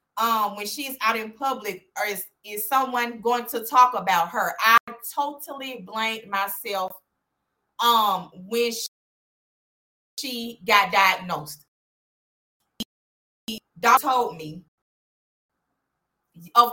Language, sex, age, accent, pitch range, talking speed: English, female, 20-39, American, 205-255 Hz, 105 wpm